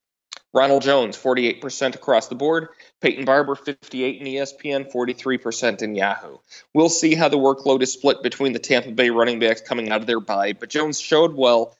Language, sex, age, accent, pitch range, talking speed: English, male, 30-49, American, 115-145 Hz, 185 wpm